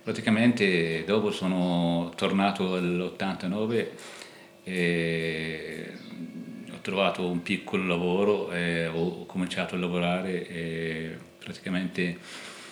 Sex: male